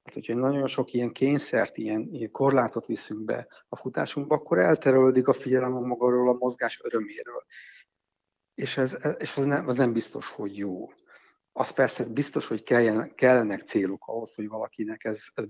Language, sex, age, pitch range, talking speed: Hungarian, male, 60-79, 115-130 Hz, 165 wpm